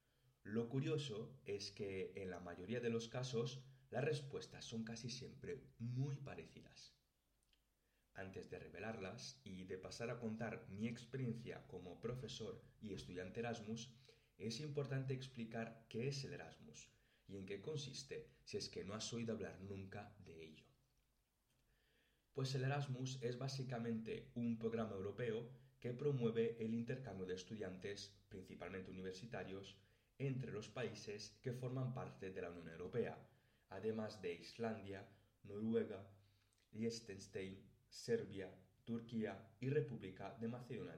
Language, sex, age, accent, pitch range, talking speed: Spanish, male, 30-49, Spanish, 100-130 Hz, 130 wpm